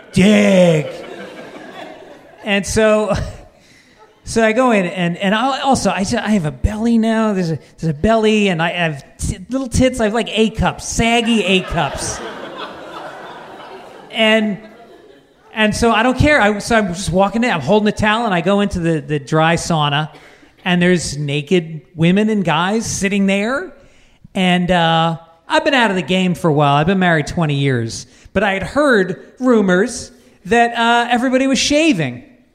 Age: 30-49